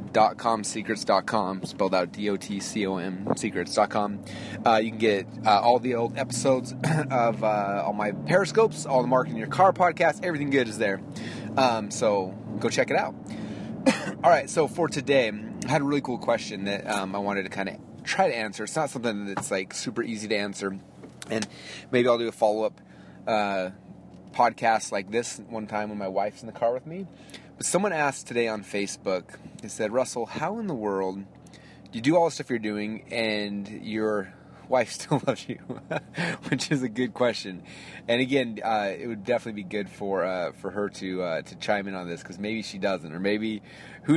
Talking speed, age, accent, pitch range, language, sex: 195 wpm, 30-49, American, 100-130 Hz, English, male